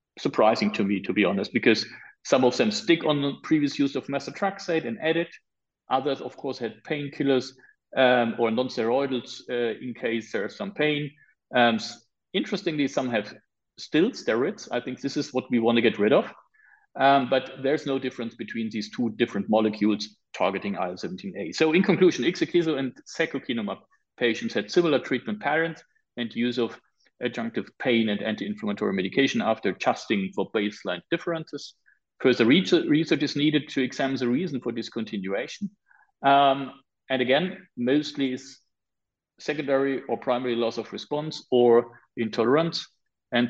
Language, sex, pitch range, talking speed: English, male, 115-145 Hz, 150 wpm